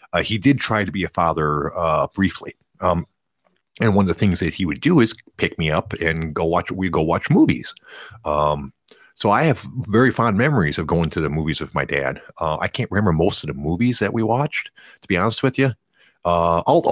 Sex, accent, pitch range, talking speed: male, American, 85-120 Hz, 225 wpm